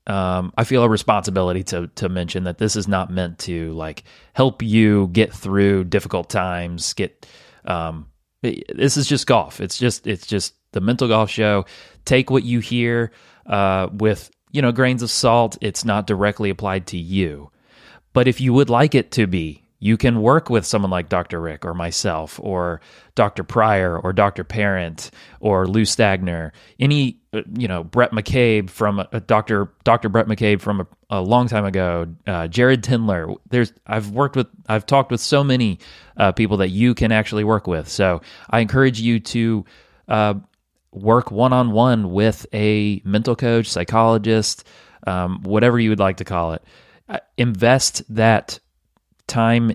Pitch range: 95-115 Hz